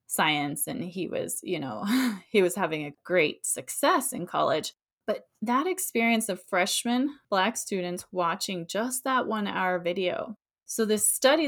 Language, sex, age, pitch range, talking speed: English, female, 20-39, 180-230 Hz, 155 wpm